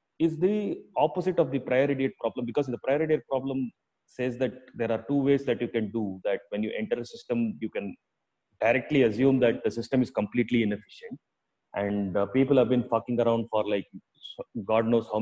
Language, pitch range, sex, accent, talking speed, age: English, 115-145 Hz, male, Indian, 195 wpm, 30-49